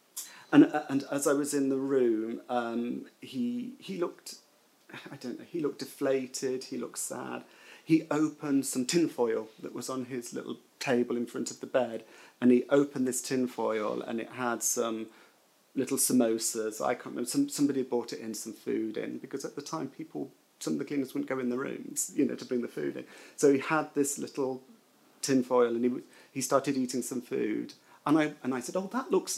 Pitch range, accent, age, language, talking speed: 120-140 Hz, British, 40-59, English, 205 wpm